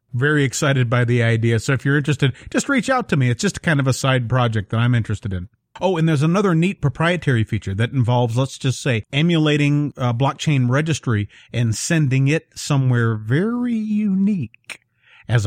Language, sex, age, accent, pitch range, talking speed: English, male, 40-59, American, 125-160 Hz, 185 wpm